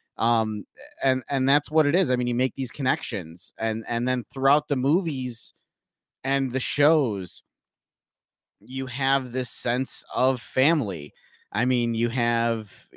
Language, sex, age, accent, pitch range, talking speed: English, male, 30-49, American, 110-130 Hz, 150 wpm